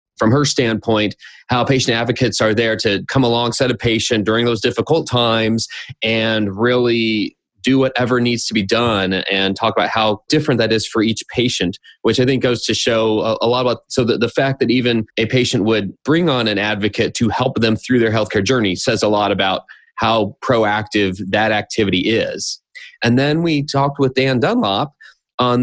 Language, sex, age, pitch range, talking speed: English, male, 30-49, 110-130 Hz, 190 wpm